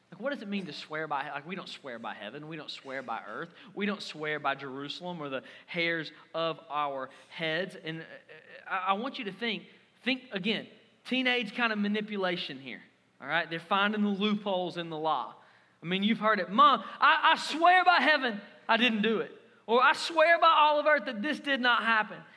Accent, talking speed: American, 210 wpm